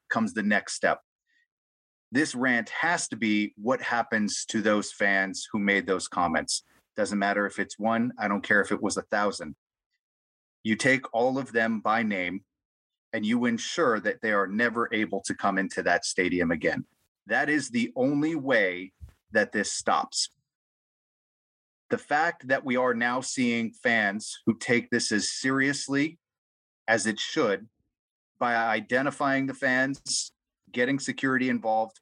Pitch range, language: 105-140 Hz, English